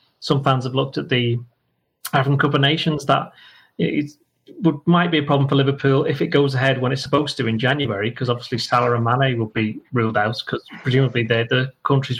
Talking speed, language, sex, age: 200 wpm, English, male, 30-49